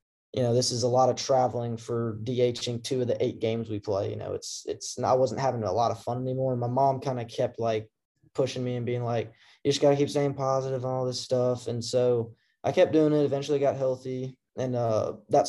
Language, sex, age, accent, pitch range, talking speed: English, male, 20-39, American, 115-130 Hz, 250 wpm